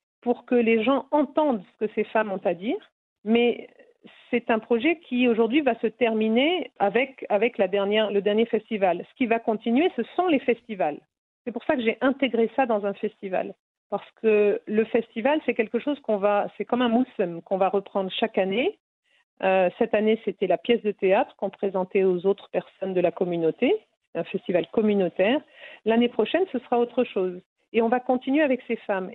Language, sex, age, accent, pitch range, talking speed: French, female, 50-69, French, 205-255 Hz, 200 wpm